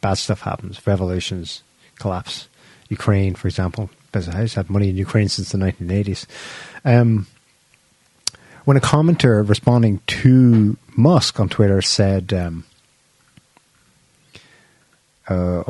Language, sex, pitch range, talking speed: English, male, 95-130 Hz, 110 wpm